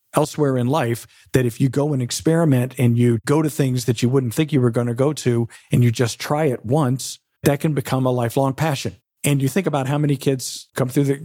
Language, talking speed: English, 245 wpm